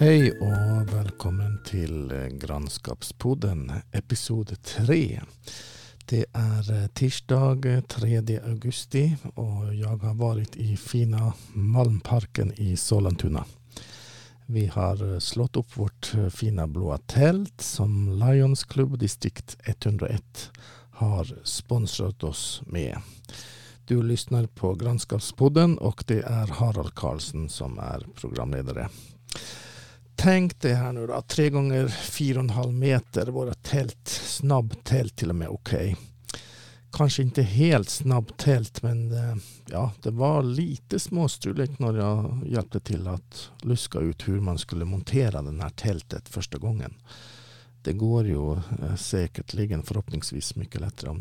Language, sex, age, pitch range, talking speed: Swedish, male, 50-69, 100-125 Hz, 120 wpm